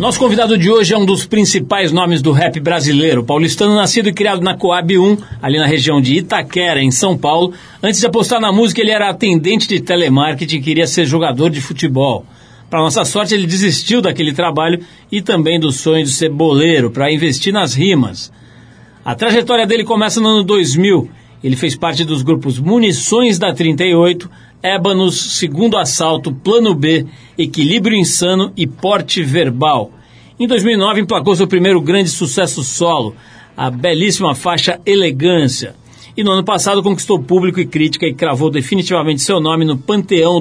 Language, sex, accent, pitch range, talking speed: Portuguese, male, Brazilian, 155-195 Hz, 170 wpm